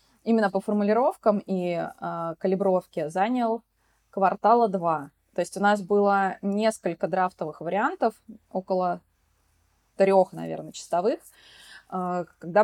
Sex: female